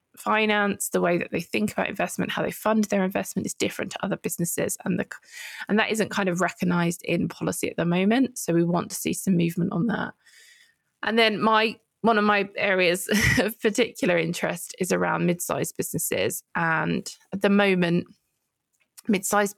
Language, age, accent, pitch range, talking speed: English, 20-39, British, 175-210 Hz, 180 wpm